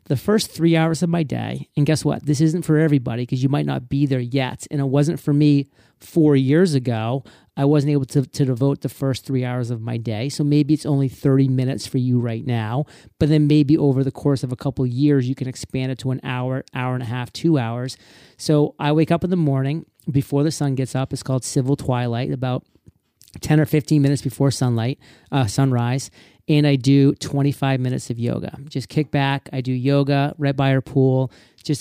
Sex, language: male, English